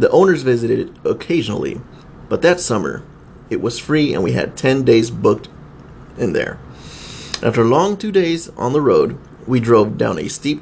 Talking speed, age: 180 wpm, 30-49